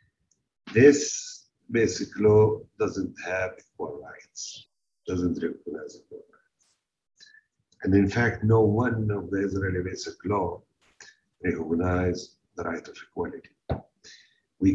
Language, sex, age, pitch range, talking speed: English, male, 50-69, 95-120 Hz, 110 wpm